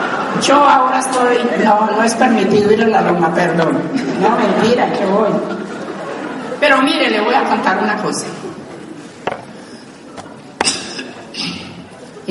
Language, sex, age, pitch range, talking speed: Spanish, female, 50-69, 220-265 Hz, 120 wpm